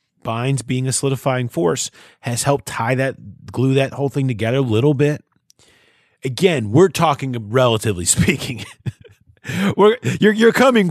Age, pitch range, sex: 30-49, 115-165 Hz, male